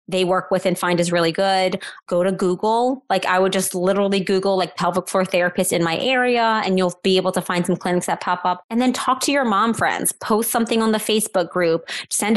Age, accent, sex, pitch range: 20-39, American, female, 180-215 Hz